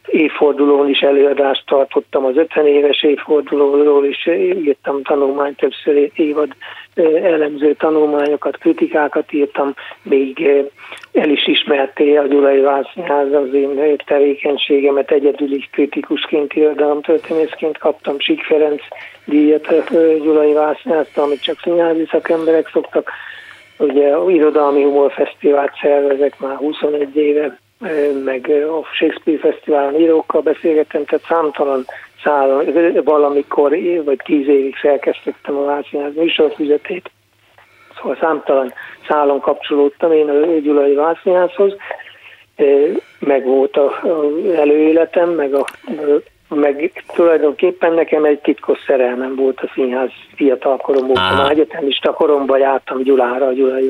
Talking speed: 110 wpm